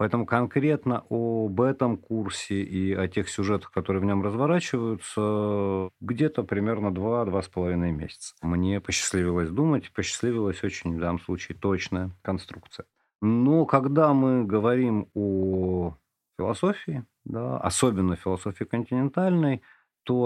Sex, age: male, 40-59